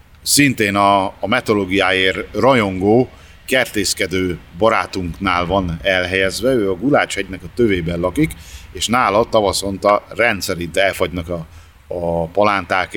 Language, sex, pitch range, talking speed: Hungarian, male, 90-100 Hz, 105 wpm